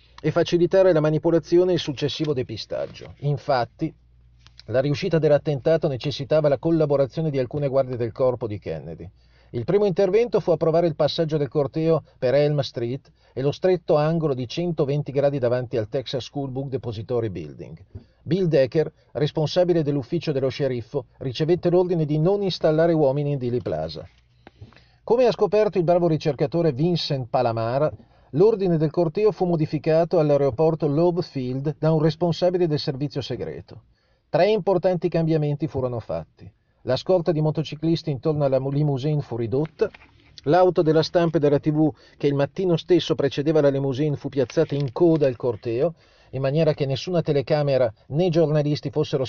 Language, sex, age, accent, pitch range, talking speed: Italian, male, 40-59, native, 130-165 Hz, 155 wpm